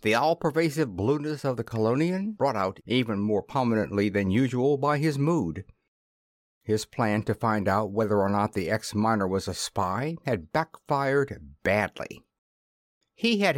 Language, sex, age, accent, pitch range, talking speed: English, male, 60-79, American, 105-155 Hz, 150 wpm